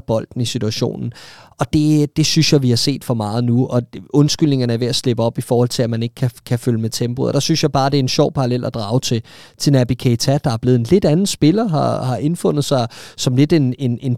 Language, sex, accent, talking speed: Danish, male, native, 270 wpm